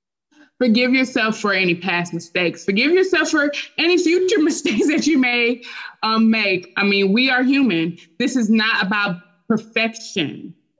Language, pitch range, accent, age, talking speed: English, 185-225 Hz, American, 20-39, 150 wpm